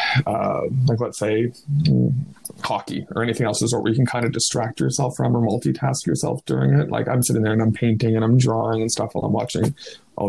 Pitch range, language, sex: 110-125 Hz, English, male